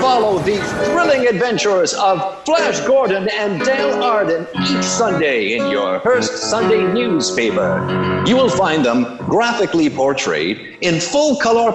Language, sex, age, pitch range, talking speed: English, male, 50-69, 170-245 Hz, 135 wpm